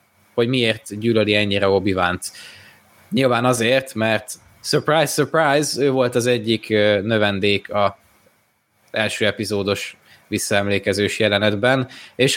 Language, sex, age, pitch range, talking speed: Hungarian, male, 20-39, 100-130 Hz, 100 wpm